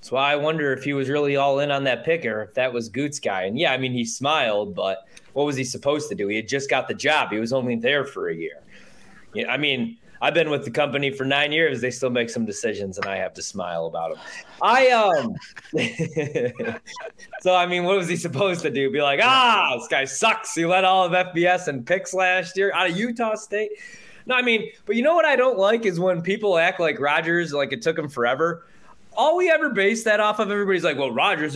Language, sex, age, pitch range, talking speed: English, male, 20-39, 140-200 Hz, 245 wpm